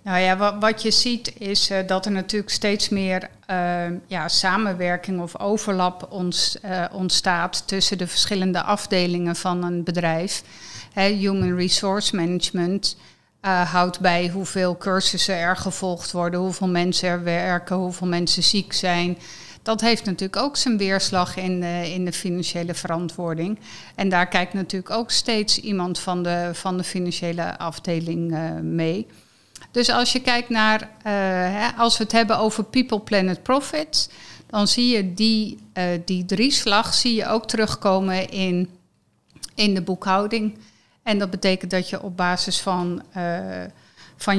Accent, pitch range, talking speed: Dutch, 180-200 Hz, 140 wpm